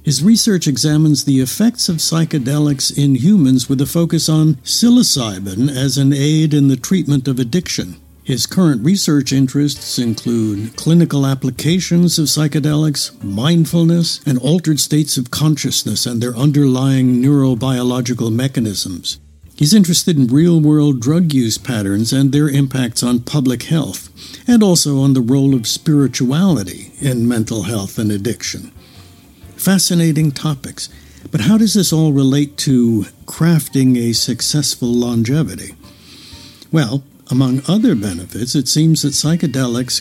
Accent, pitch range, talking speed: American, 120-155 Hz, 130 wpm